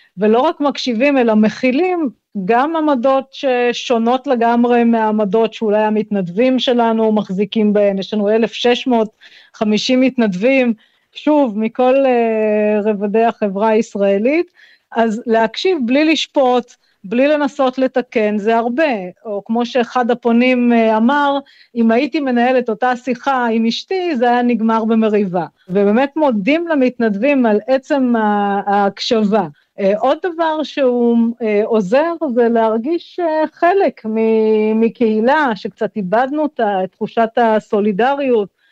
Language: Hebrew